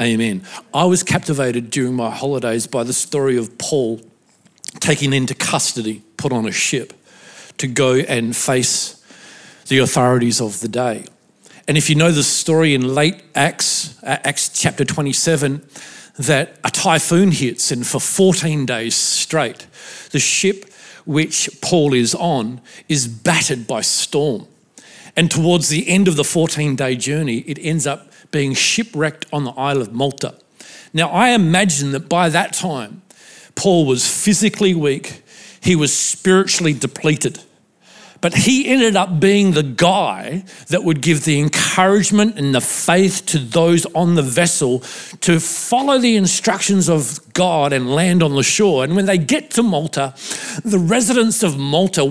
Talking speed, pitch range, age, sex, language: 155 wpm, 135-185 Hz, 50-69, male, English